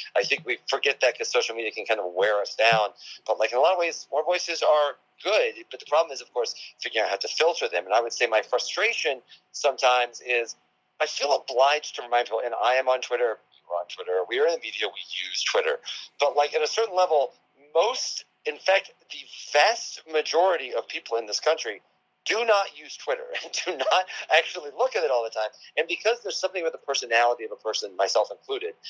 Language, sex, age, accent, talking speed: English, male, 40-59, American, 230 wpm